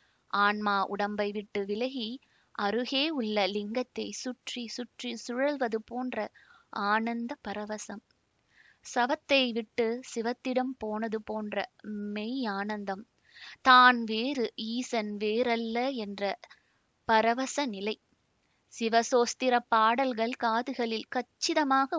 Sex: female